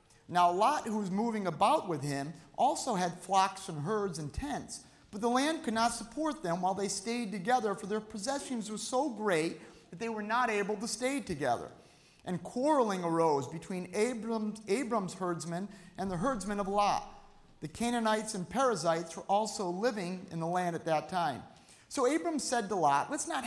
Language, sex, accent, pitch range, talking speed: English, male, American, 180-230 Hz, 185 wpm